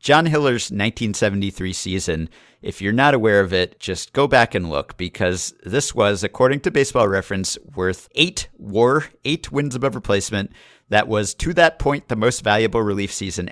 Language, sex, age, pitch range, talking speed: English, male, 50-69, 95-130 Hz, 175 wpm